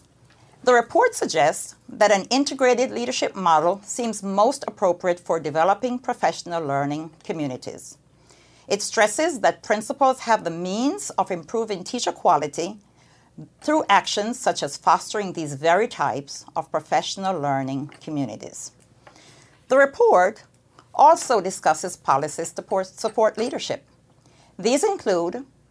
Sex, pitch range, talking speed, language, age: female, 165-240 Hz, 115 wpm, English, 50-69